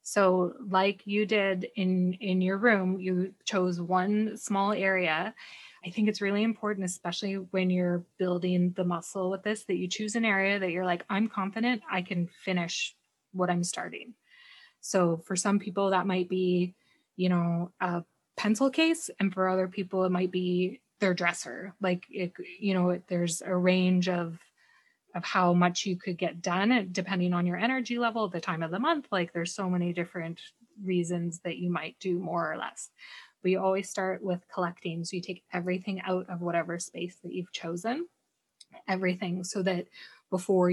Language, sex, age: English, female, 20-39